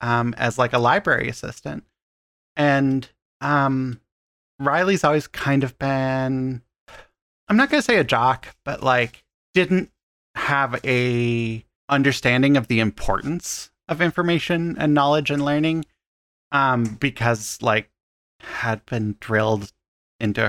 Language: English